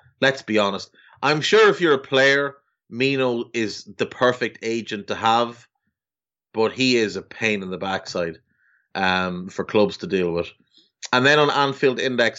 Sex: male